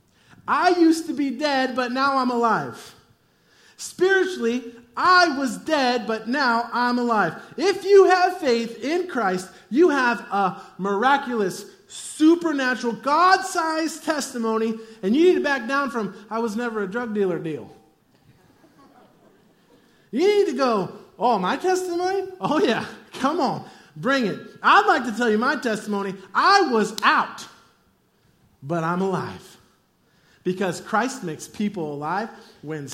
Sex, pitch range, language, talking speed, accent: male, 215-280 Hz, English, 140 wpm, American